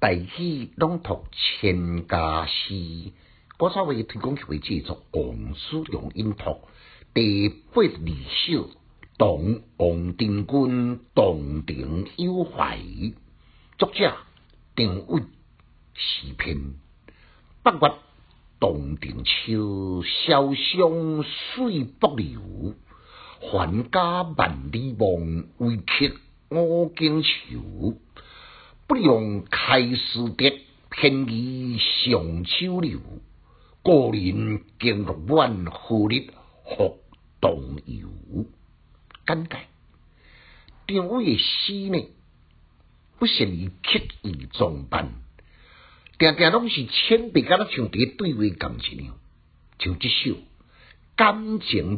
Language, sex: Chinese, male